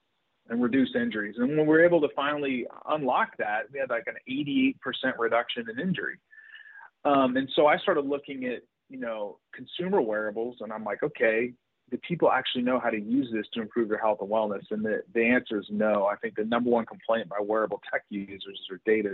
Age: 30-49